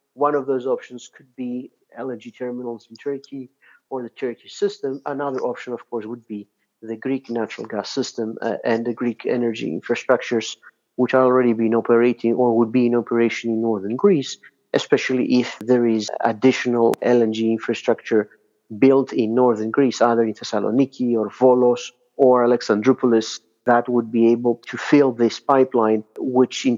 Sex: male